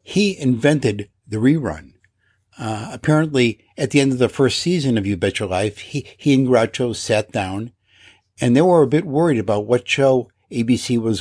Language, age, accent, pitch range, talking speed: English, 60-79, American, 105-130 Hz, 185 wpm